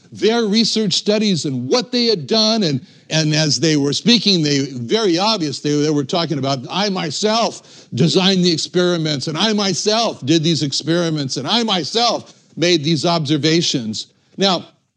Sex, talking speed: male, 160 wpm